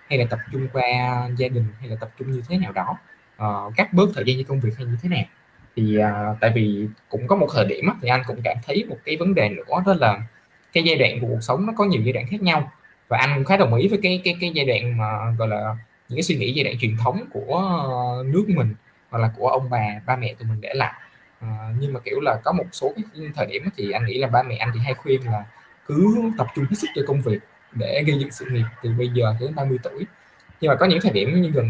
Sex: male